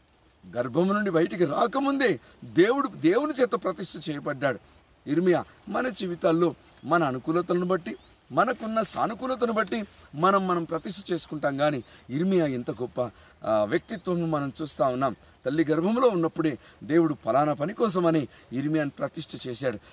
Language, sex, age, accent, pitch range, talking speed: Telugu, male, 50-69, native, 145-200 Hz, 120 wpm